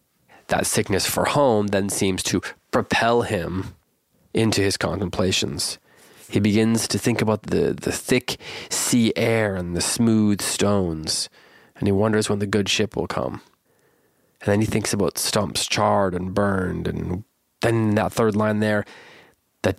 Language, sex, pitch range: English, male, 95-110 Hz